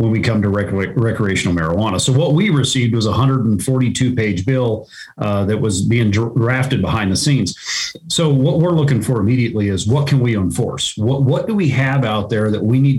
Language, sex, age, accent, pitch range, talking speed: English, male, 40-59, American, 105-140 Hz, 205 wpm